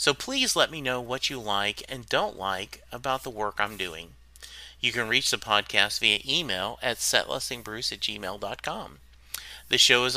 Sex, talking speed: male, 175 wpm